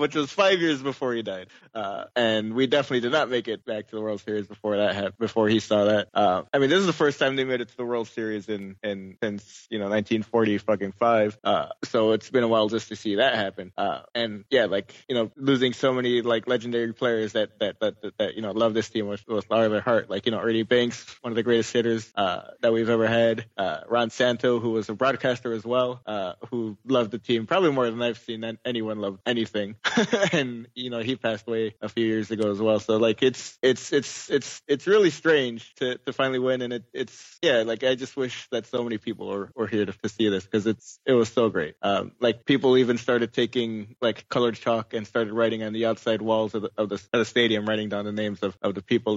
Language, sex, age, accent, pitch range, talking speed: English, male, 20-39, American, 110-125 Hz, 255 wpm